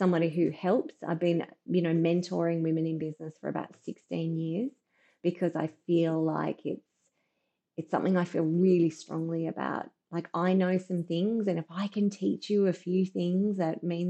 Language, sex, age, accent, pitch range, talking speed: English, female, 20-39, Australian, 165-190 Hz, 185 wpm